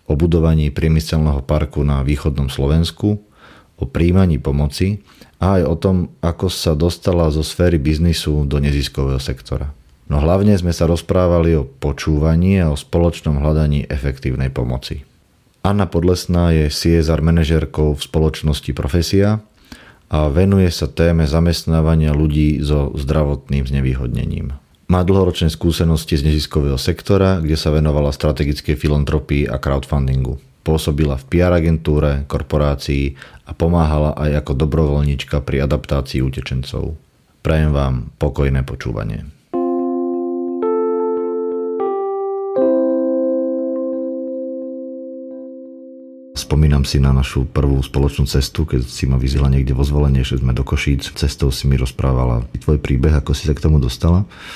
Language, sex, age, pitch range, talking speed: English, male, 40-59, 70-85 Hz, 125 wpm